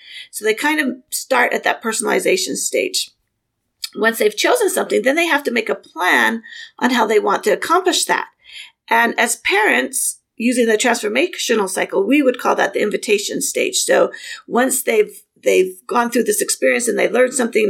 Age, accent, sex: 40-59, American, female